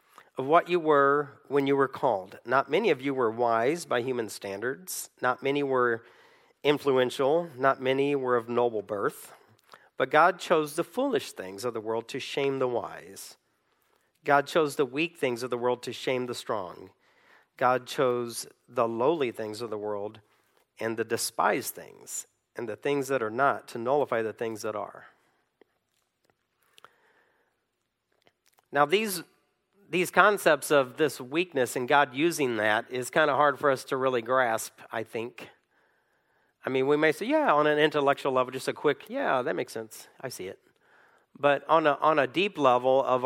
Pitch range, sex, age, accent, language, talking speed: 125-150 Hz, male, 40-59, American, English, 175 wpm